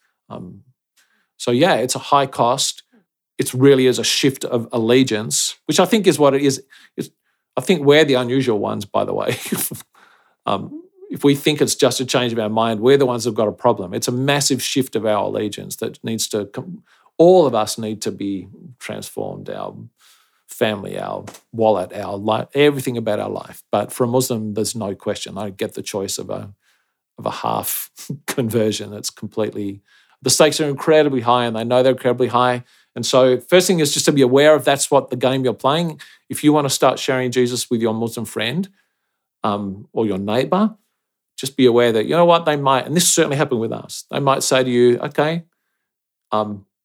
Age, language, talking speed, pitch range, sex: 50-69, English, 205 wpm, 115-145 Hz, male